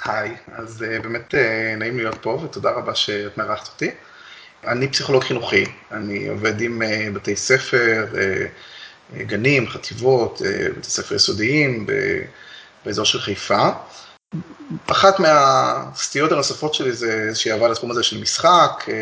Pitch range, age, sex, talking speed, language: 110-135 Hz, 20-39, male, 120 wpm, Hebrew